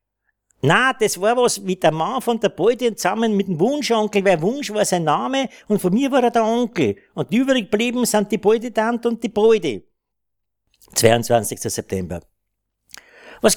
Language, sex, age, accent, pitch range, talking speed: German, male, 60-79, Austrian, 170-240 Hz, 175 wpm